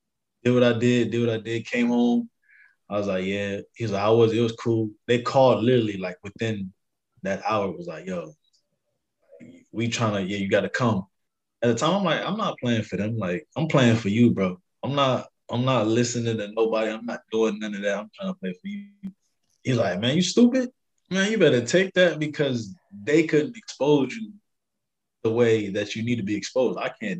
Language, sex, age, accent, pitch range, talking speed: English, male, 20-39, American, 105-150 Hz, 220 wpm